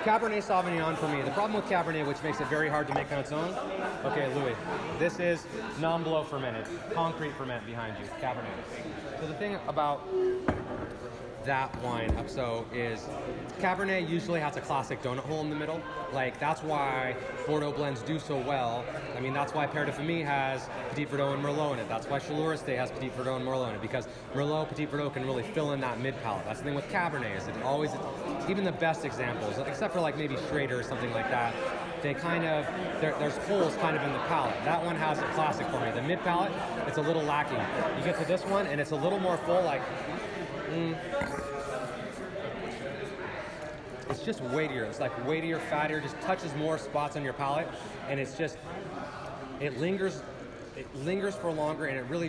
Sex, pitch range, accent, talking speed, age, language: male, 130-165 Hz, American, 195 wpm, 30-49, English